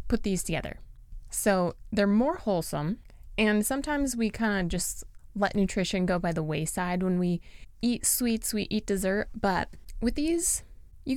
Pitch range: 180-235 Hz